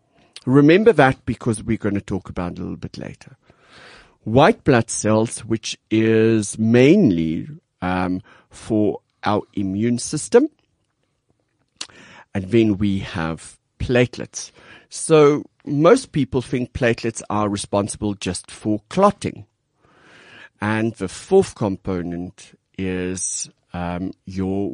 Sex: male